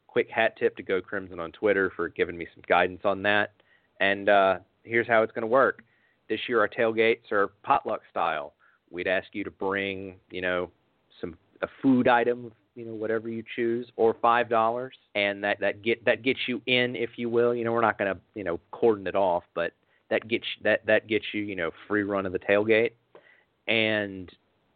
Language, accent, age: English, American, 30-49